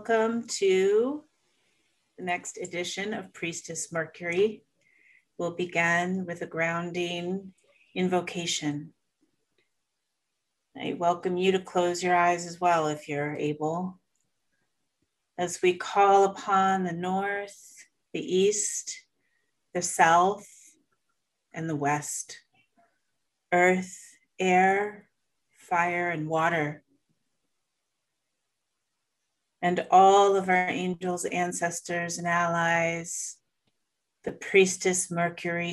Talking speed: 90 wpm